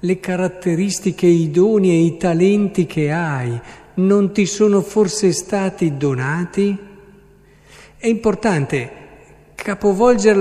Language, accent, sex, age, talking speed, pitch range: Italian, native, male, 50-69, 105 wpm, 145-205 Hz